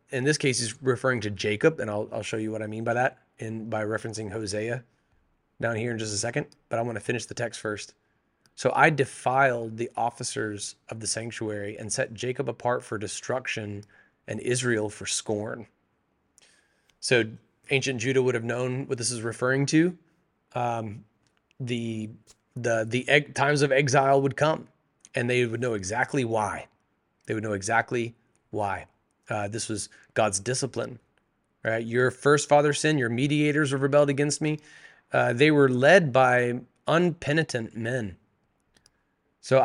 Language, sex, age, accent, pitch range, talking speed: English, male, 30-49, American, 115-140 Hz, 165 wpm